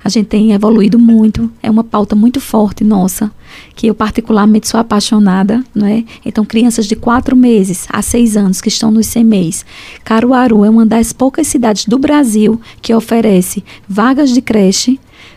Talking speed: 165 wpm